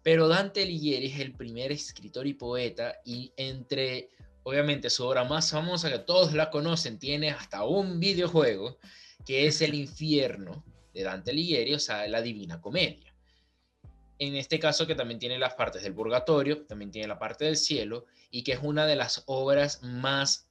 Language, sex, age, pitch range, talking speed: Spanish, male, 20-39, 115-145 Hz, 175 wpm